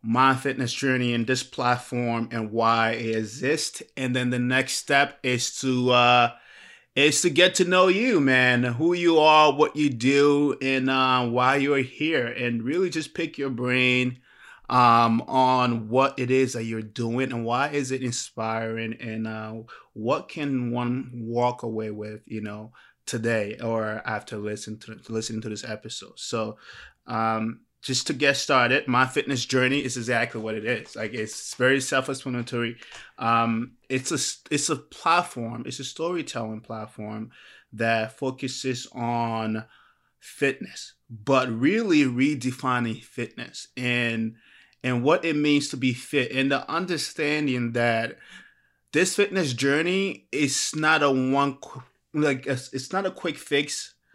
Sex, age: male, 20-39